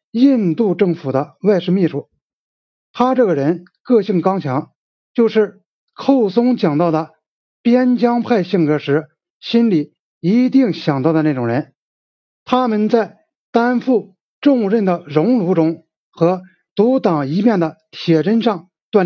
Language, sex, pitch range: Chinese, male, 160-230 Hz